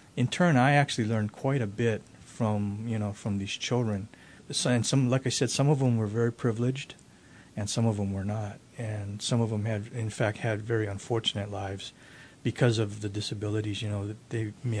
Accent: American